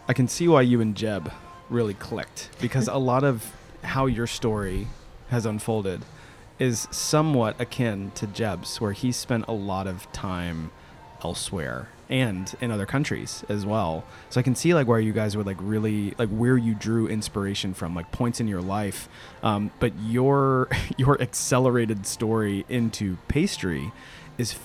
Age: 30-49